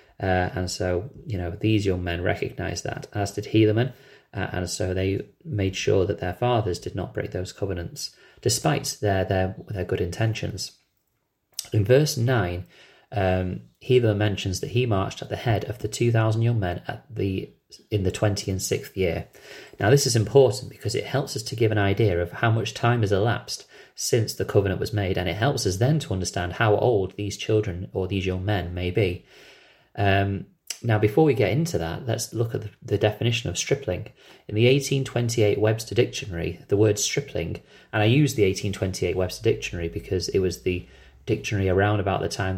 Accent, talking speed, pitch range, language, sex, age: British, 195 wpm, 95-115 Hz, English, male, 30-49